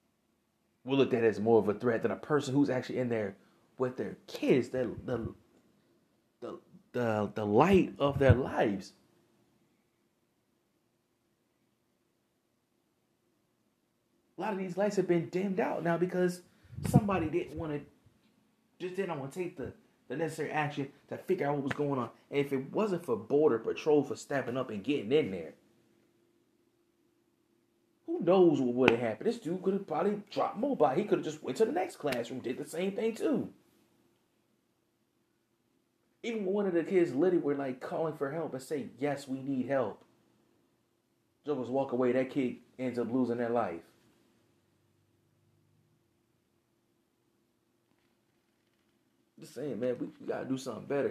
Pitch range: 115-180 Hz